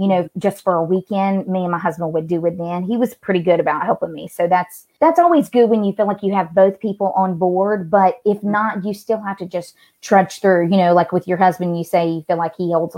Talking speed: 275 wpm